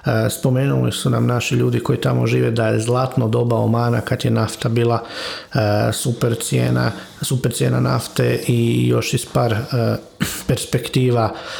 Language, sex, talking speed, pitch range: Croatian, male, 135 wpm, 110-125 Hz